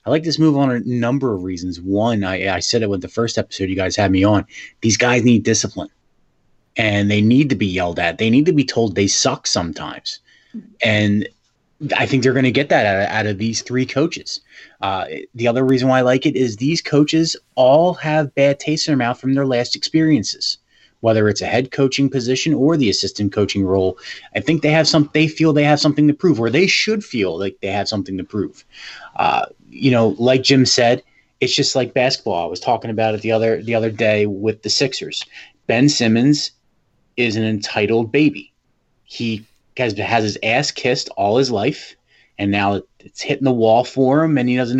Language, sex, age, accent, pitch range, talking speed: English, male, 30-49, American, 105-140 Hz, 215 wpm